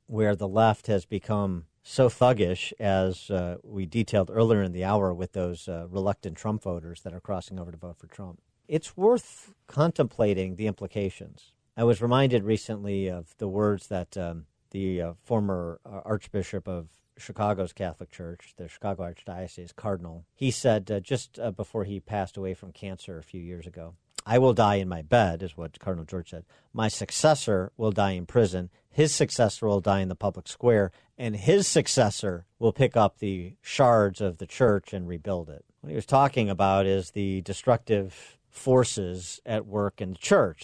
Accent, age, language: American, 50-69, English